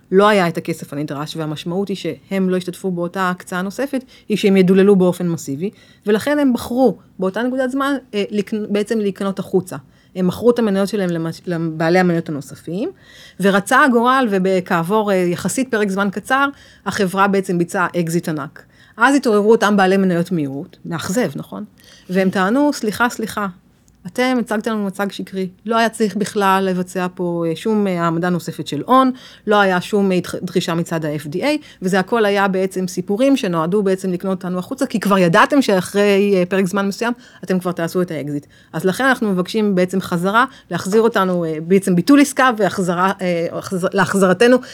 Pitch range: 175-215 Hz